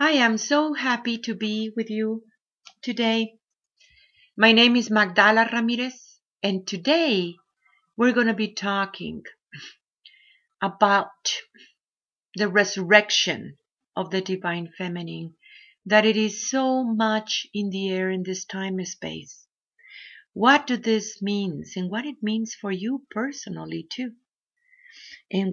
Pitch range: 190-245 Hz